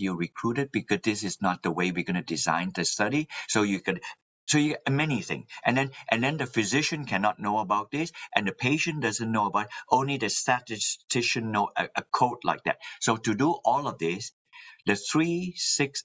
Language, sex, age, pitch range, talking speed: English, male, 60-79, 95-130 Hz, 210 wpm